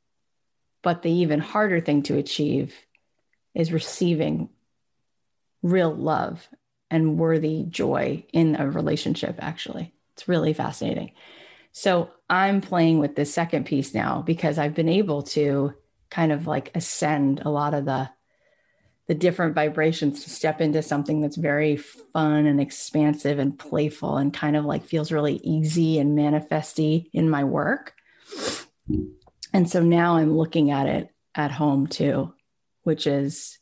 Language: English